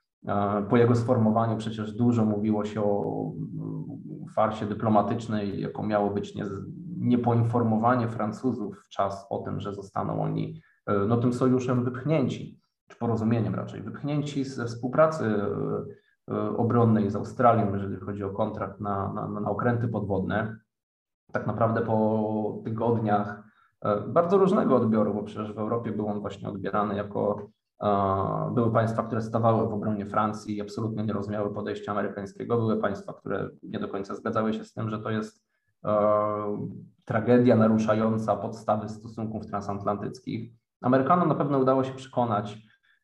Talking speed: 135 wpm